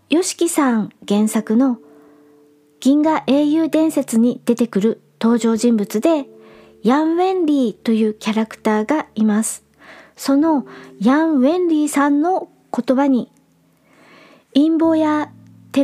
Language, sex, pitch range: Japanese, male, 210-305 Hz